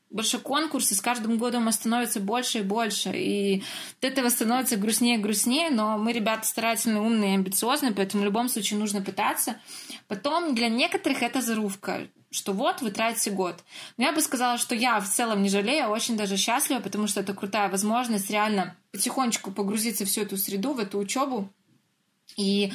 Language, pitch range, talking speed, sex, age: Russian, 205-255 Hz, 180 wpm, female, 20-39